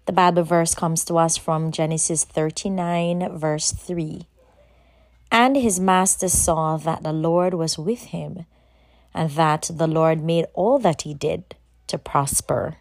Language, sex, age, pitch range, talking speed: English, female, 30-49, 135-175 Hz, 150 wpm